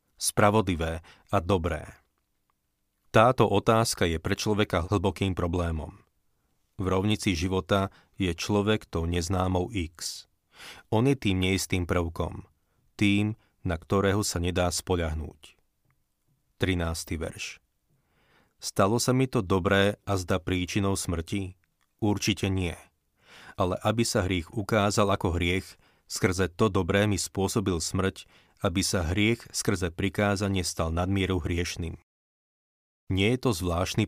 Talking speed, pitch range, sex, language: 120 wpm, 90-105 Hz, male, Slovak